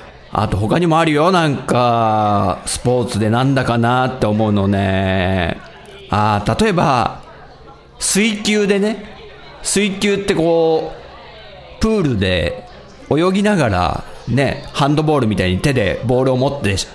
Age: 40-59